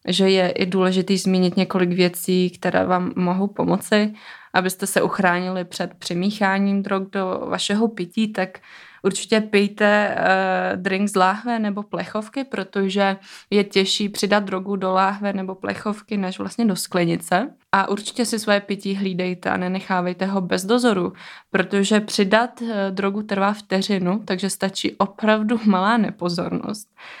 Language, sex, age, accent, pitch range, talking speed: Czech, female, 20-39, native, 190-220 Hz, 140 wpm